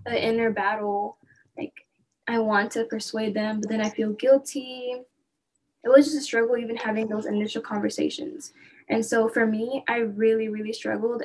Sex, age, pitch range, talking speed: female, 10-29, 215-245 Hz, 170 wpm